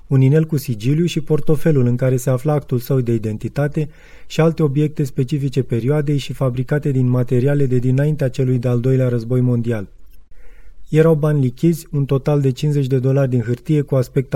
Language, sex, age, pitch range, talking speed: Romanian, male, 30-49, 130-155 Hz, 180 wpm